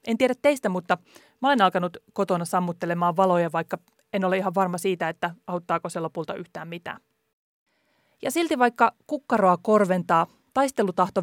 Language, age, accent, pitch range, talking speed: Finnish, 30-49, native, 180-235 Hz, 150 wpm